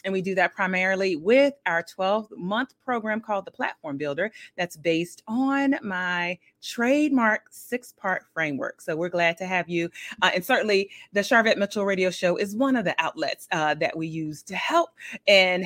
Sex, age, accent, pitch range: female, 30-49, American, 170-230 Hz